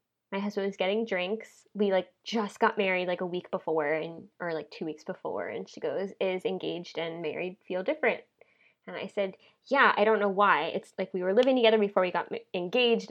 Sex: female